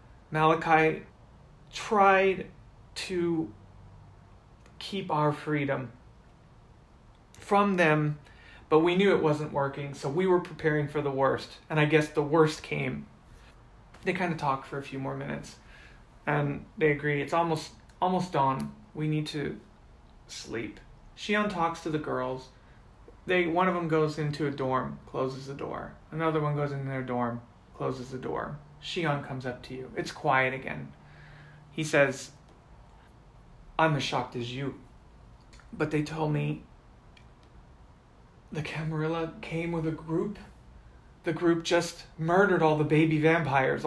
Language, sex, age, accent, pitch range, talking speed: English, male, 30-49, American, 130-165 Hz, 145 wpm